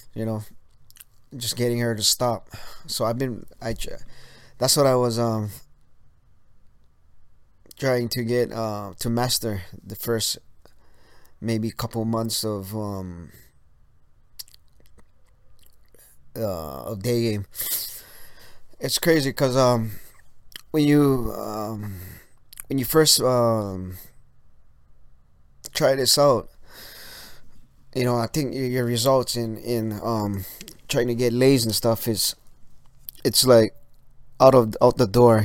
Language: English